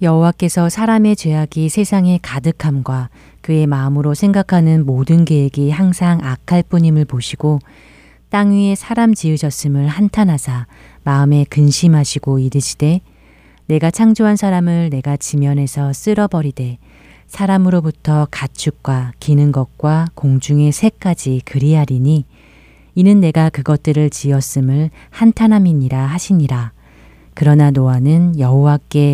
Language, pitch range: Korean, 135-170 Hz